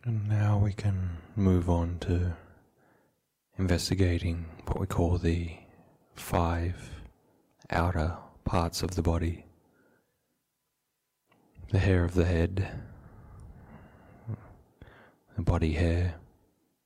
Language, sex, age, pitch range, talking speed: English, male, 20-39, 85-95 Hz, 95 wpm